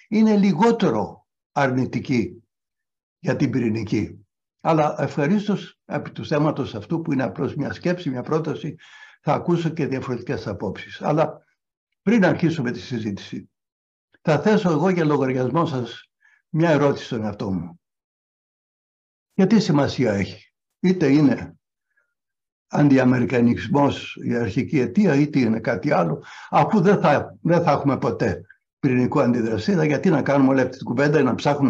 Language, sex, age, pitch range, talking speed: Greek, male, 60-79, 125-160 Hz, 135 wpm